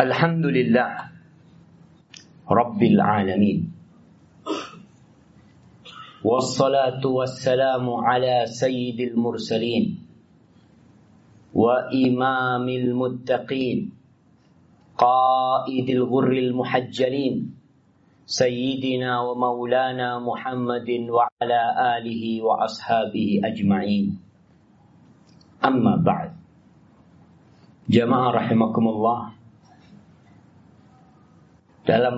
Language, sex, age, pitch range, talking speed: Indonesian, male, 40-59, 115-130 Hz, 55 wpm